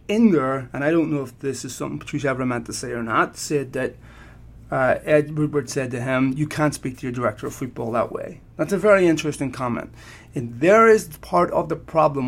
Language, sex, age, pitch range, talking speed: English, male, 30-49, 130-165 Hz, 230 wpm